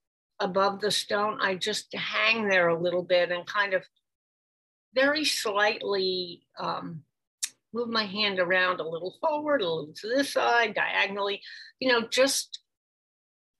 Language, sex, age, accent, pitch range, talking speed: English, female, 50-69, American, 185-240 Hz, 140 wpm